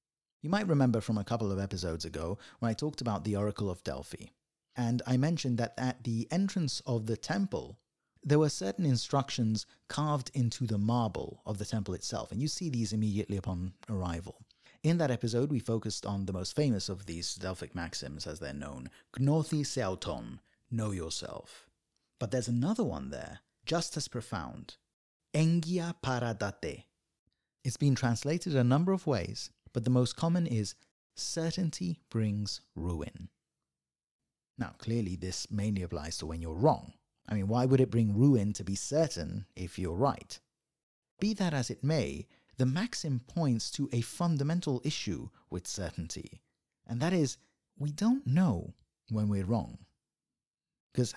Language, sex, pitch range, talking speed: English, male, 100-145 Hz, 160 wpm